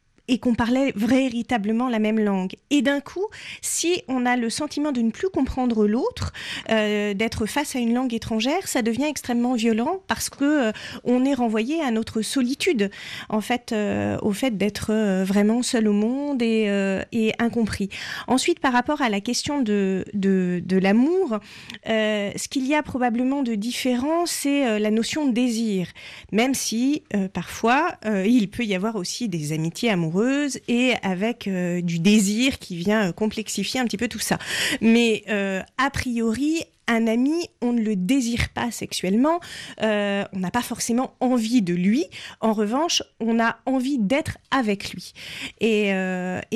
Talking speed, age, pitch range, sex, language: 175 wpm, 40-59, 210-260 Hz, female, French